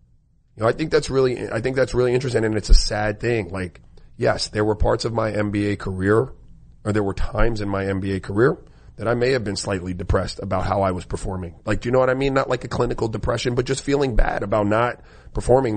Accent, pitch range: American, 100-120 Hz